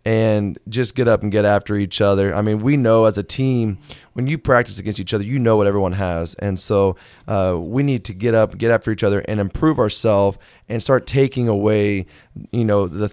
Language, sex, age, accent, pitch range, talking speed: English, male, 20-39, American, 100-115 Hz, 225 wpm